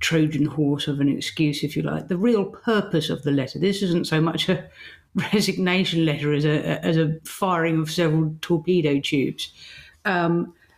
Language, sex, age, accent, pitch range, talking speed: English, female, 50-69, British, 155-185 Hz, 175 wpm